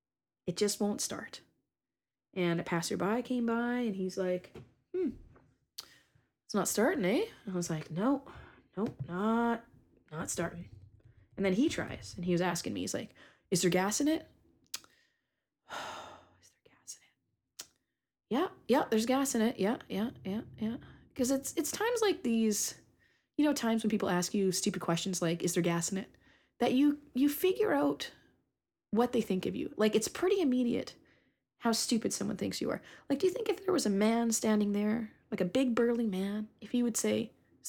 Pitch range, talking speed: 195-250 Hz, 195 wpm